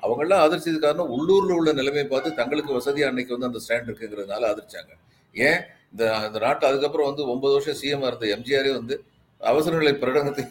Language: Tamil